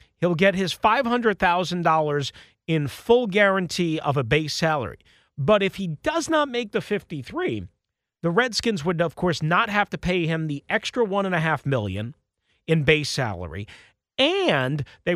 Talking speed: 150 wpm